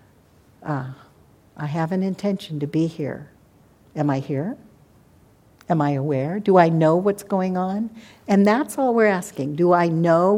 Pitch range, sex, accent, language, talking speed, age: 155-205 Hz, female, American, English, 160 wpm, 60-79